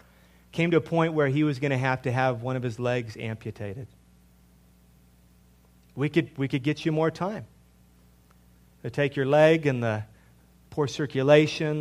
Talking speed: 170 wpm